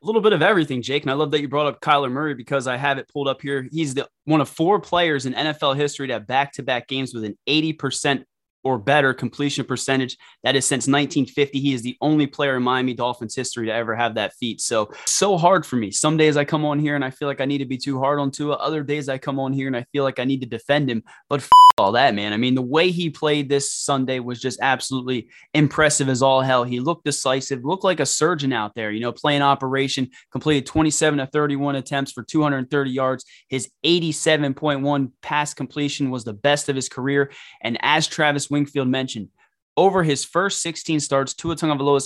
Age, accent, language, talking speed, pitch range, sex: 20-39, American, English, 230 wpm, 130-155 Hz, male